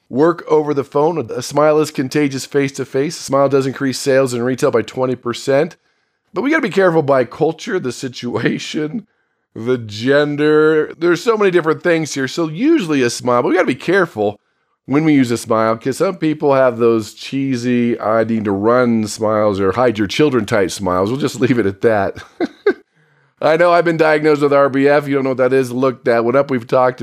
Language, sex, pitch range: English, male, 125-160 Hz